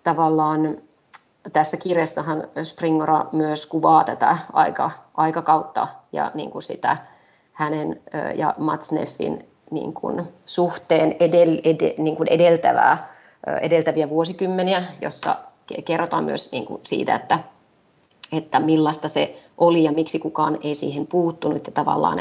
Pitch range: 155-165 Hz